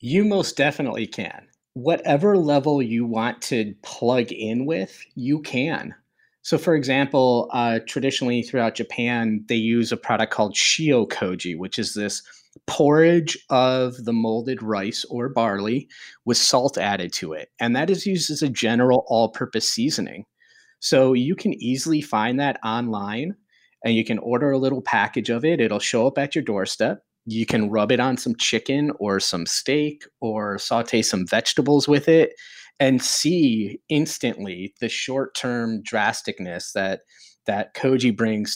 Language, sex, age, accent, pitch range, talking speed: English, male, 30-49, American, 110-140 Hz, 155 wpm